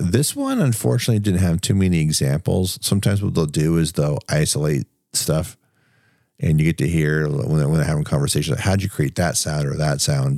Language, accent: English, American